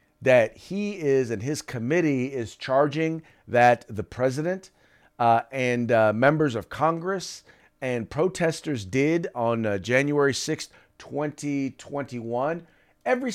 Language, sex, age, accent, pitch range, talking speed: English, male, 40-59, American, 115-170 Hz, 115 wpm